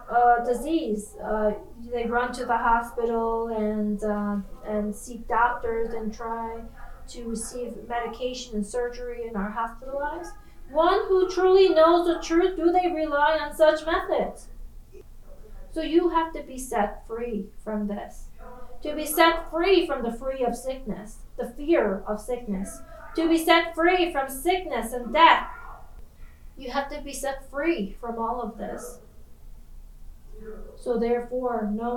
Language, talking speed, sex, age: English, 145 wpm, female, 30-49